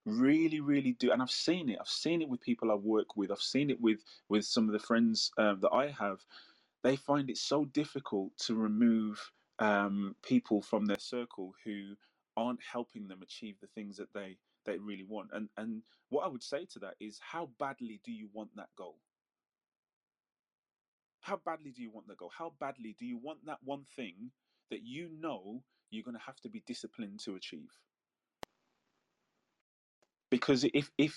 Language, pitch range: English, 105-145 Hz